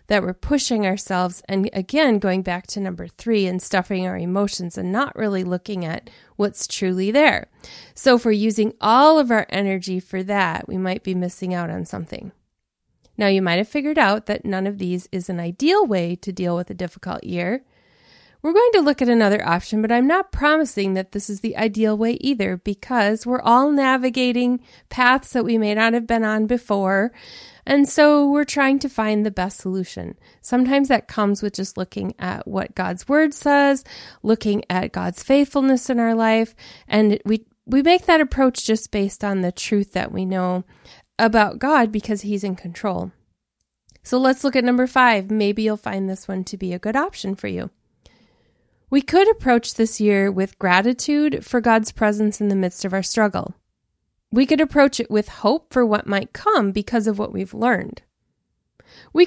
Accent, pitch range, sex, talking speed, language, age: American, 195-260 Hz, female, 190 wpm, English, 30-49